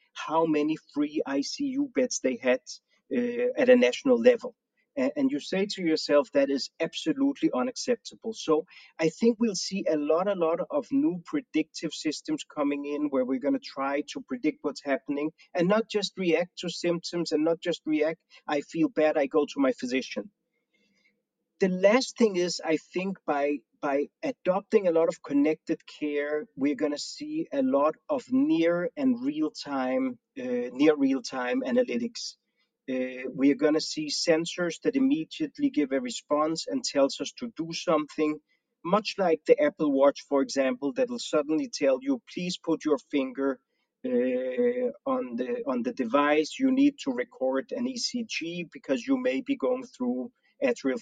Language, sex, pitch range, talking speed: Hebrew, male, 150-255 Hz, 175 wpm